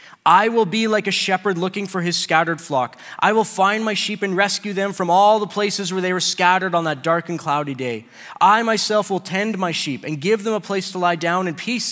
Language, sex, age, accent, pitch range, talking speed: English, male, 20-39, American, 160-195 Hz, 245 wpm